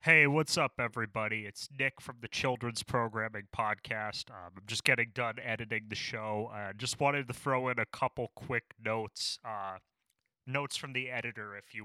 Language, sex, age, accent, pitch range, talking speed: English, male, 30-49, American, 105-115 Hz, 180 wpm